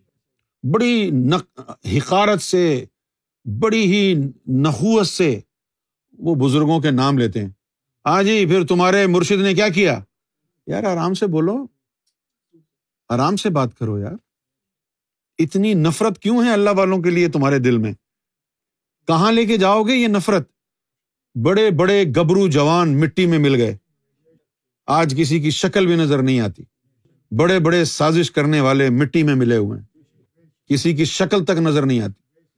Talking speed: 150 wpm